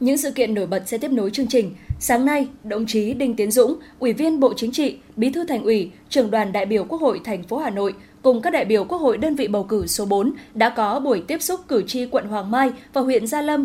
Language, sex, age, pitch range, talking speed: Vietnamese, female, 10-29, 220-270 Hz, 275 wpm